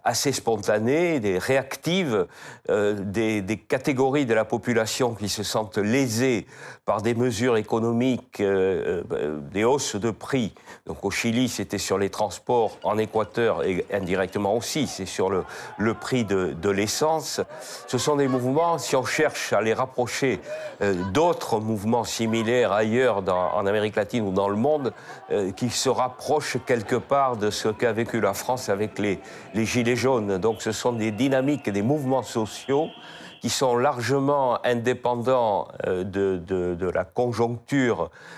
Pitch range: 105-130 Hz